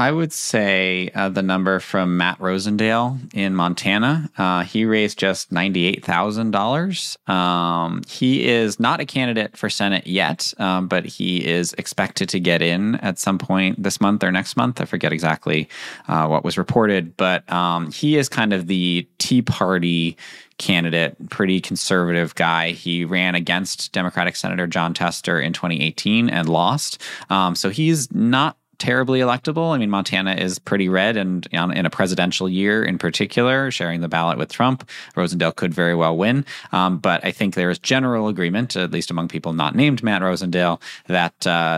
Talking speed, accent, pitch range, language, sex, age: 170 wpm, American, 85-110 Hz, English, male, 20-39